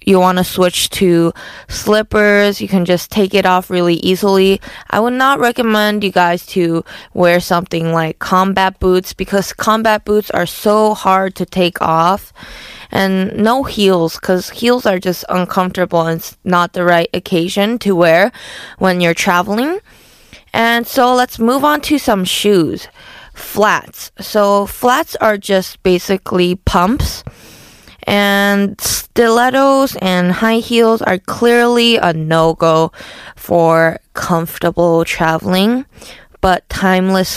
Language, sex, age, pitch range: Korean, female, 20-39, 175-215 Hz